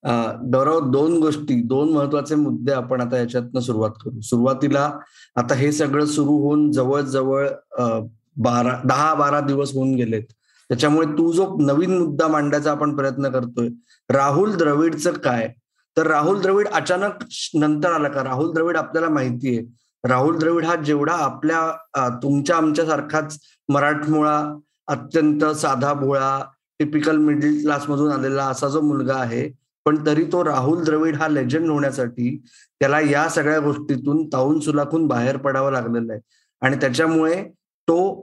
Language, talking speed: Marathi, 135 wpm